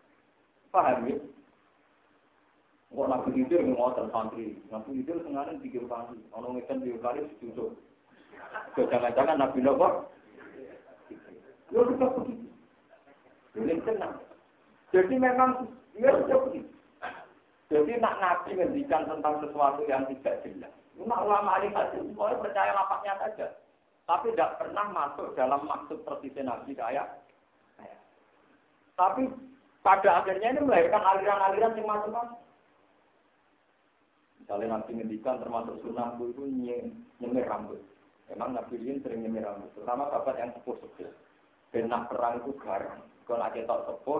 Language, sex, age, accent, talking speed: Indonesian, male, 50-69, Indian, 115 wpm